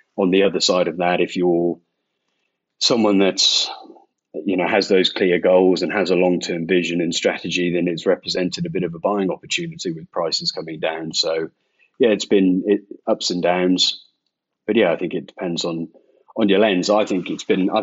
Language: English